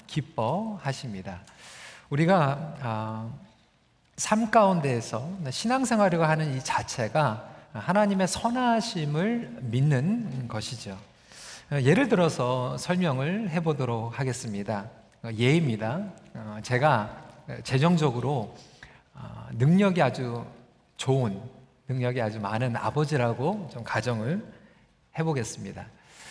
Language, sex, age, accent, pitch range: Korean, male, 40-59, native, 115-165 Hz